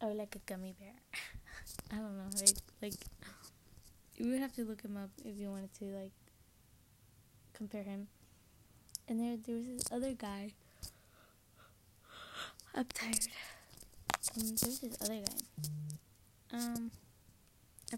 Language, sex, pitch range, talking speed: English, female, 150-225 Hz, 135 wpm